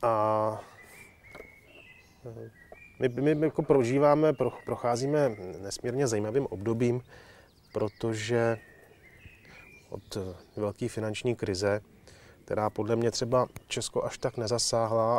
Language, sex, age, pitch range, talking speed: Czech, male, 30-49, 115-135 Hz, 85 wpm